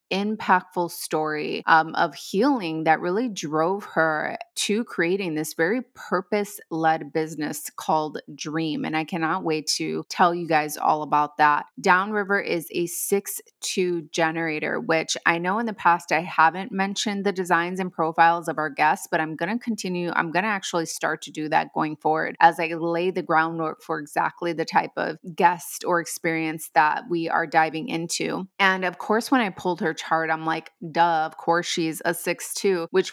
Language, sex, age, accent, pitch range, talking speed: English, female, 20-39, American, 160-190 Hz, 180 wpm